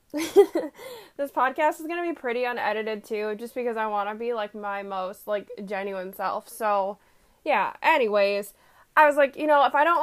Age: 20-39